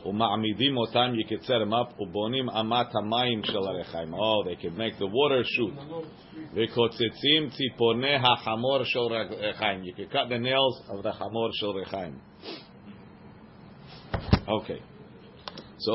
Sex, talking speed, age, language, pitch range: male, 80 wpm, 50-69, English, 110-125 Hz